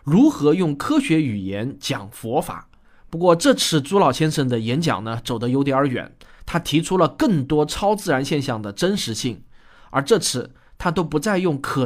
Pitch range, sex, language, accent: 125-180 Hz, male, Chinese, native